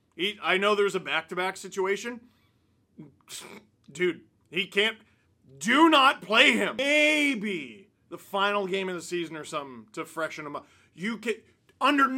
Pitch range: 150-240 Hz